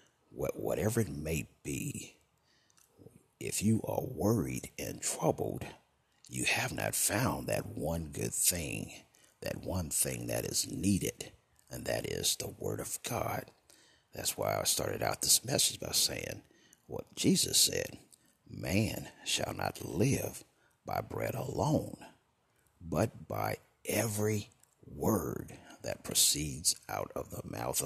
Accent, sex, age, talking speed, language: American, male, 60-79, 130 wpm, English